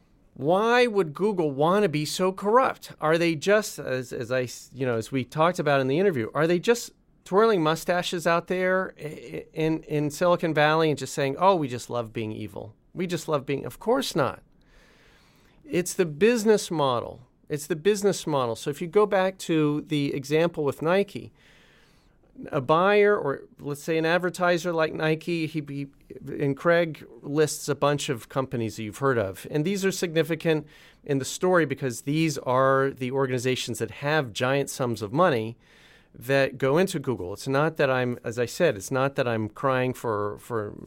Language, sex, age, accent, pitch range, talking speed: English, male, 40-59, American, 130-175 Hz, 185 wpm